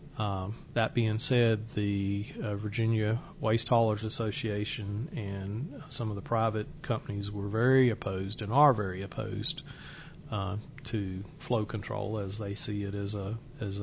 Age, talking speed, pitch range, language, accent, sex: 40-59, 150 wpm, 105-135 Hz, English, American, male